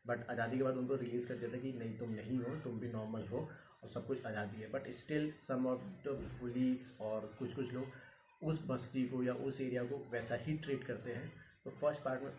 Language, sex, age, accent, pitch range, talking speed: Hindi, male, 30-49, native, 115-135 Hz, 235 wpm